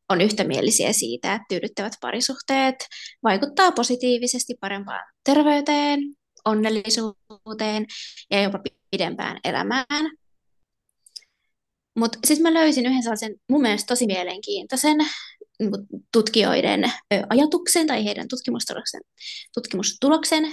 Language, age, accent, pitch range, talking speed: Finnish, 20-39, native, 205-265 Hz, 85 wpm